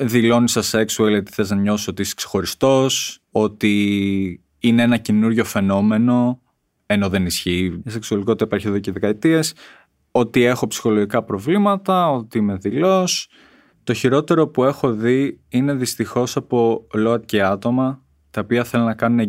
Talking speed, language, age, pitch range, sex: 140 wpm, Greek, 20-39, 105-140 Hz, male